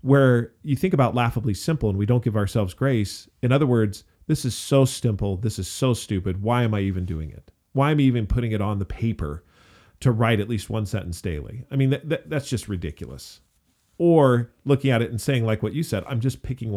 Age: 40-59